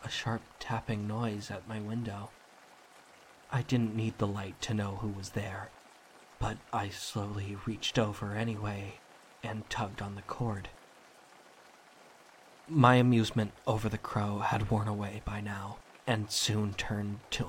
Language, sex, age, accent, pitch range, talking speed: English, male, 20-39, American, 105-120 Hz, 145 wpm